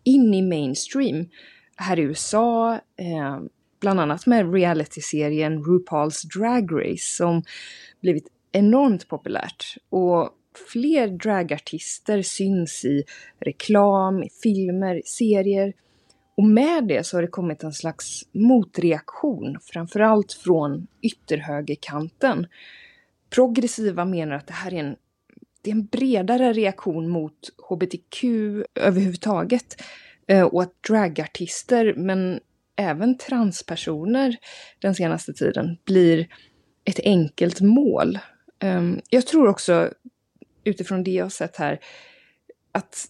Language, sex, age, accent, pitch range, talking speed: Swedish, female, 20-39, native, 165-225 Hz, 105 wpm